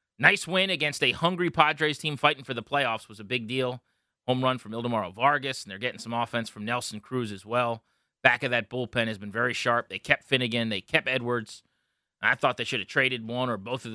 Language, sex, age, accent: English, male, 30-49, American